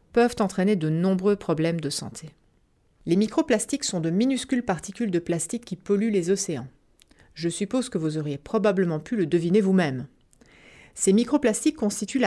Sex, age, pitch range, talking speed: female, 30-49, 170-235 Hz, 155 wpm